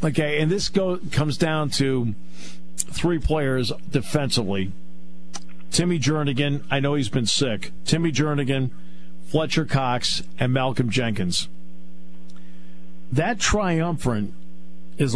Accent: American